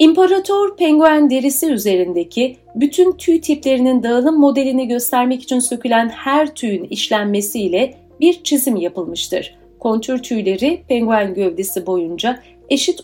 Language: Turkish